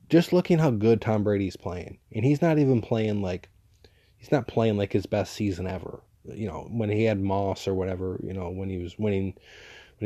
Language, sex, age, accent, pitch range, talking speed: English, male, 20-39, American, 100-120 Hz, 215 wpm